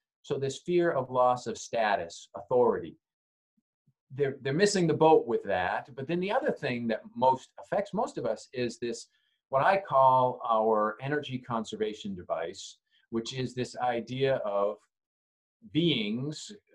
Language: English